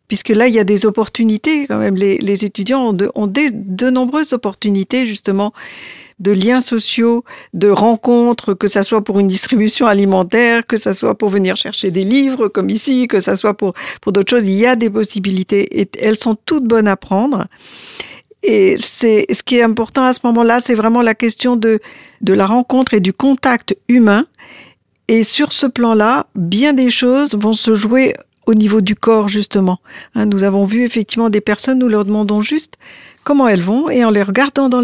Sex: female